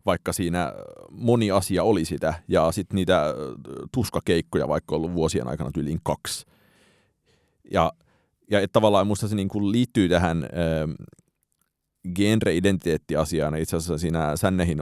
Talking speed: 125 wpm